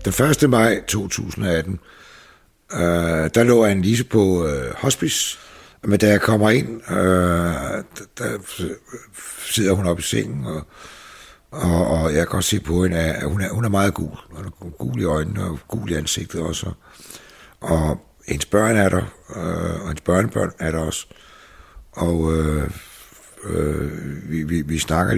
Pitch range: 80-100 Hz